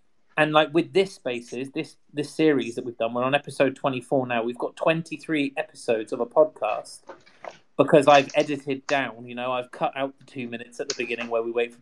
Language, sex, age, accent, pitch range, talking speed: English, male, 30-49, British, 120-150 Hz, 220 wpm